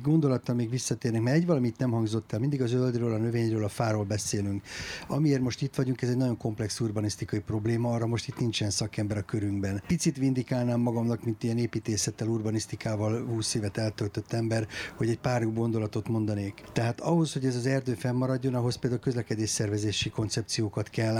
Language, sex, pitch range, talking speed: Hungarian, male, 110-125 Hz, 180 wpm